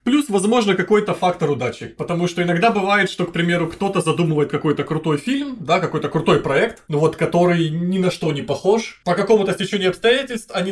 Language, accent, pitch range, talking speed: Russian, native, 160-215 Hz, 190 wpm